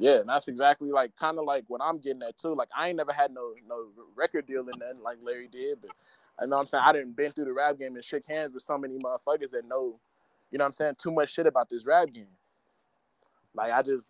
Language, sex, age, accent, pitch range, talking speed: English, male, 20-39, American, 125-170 Hz, 270 wpm